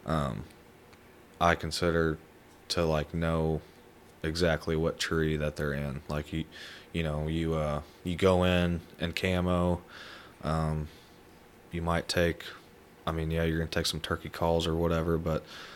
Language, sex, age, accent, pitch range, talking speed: English, male, 20-39, American, 80-85 Hz, 150 wpm